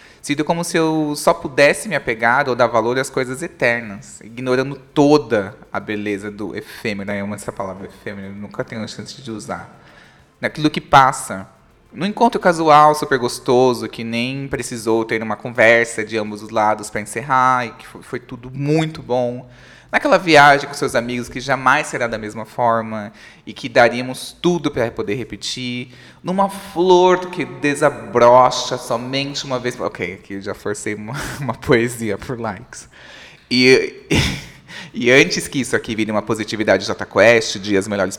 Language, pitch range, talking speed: Portuguese, 110-145 Hz, 165 wpm